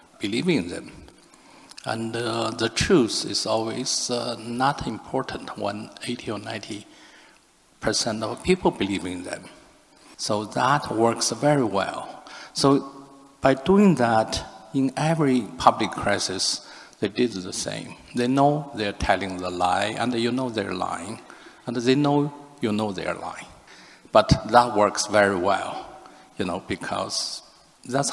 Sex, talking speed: male, 140 wpm